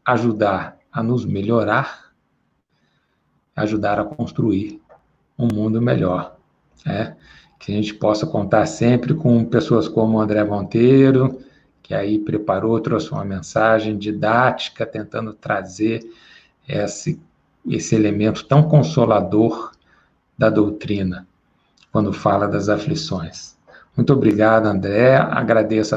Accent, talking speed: Brazilian, 105 wpm